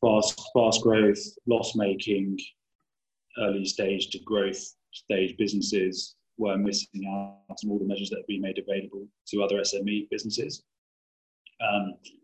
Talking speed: 125 wpm